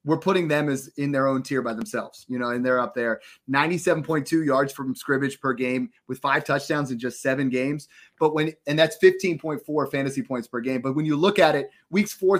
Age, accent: 30-49, American